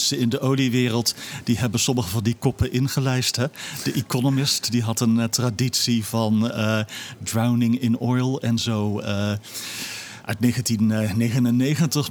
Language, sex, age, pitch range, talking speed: Dutch, male, 40-59, 110-135 Hz, 140 wpm